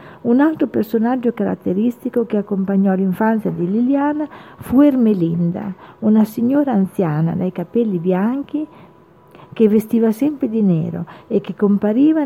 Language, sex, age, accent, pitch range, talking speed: Italian, female, 50-69, native, 180-240 Hz, 120 wpm